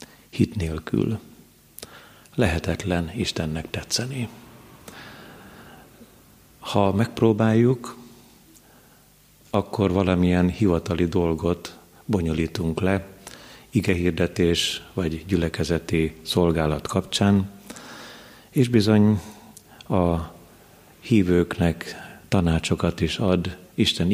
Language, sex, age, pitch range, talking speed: Hungarian, male, 50-69, 85-100 Hz, 65 wpm